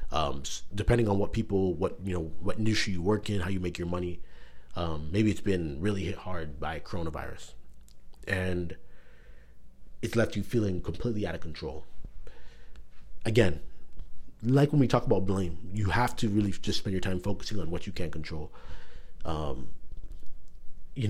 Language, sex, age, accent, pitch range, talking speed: English, male, 30-49, American, 80-110 Hz, 170 wpm